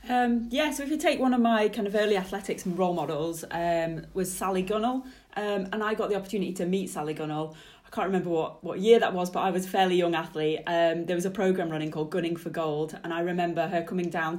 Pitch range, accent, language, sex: 170-215 Hz, British, English, female